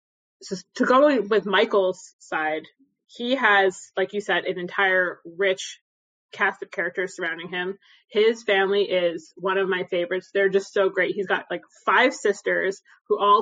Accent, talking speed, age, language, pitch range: American, 165 wpm, 20-39, English, 190-220 Hz